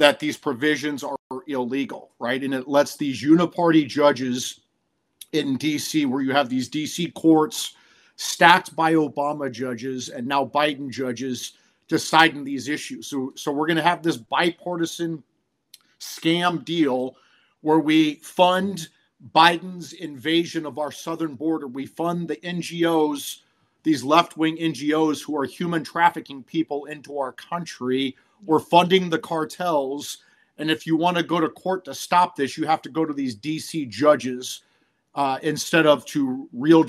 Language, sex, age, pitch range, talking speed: English, male, 40-59, 135-160 Hz, 150 wpm